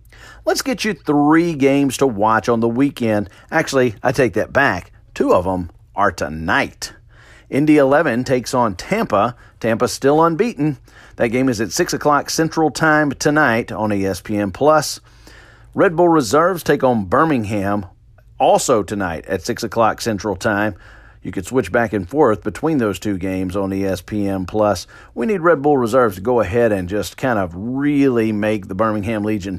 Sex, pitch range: male, 105-145 Hz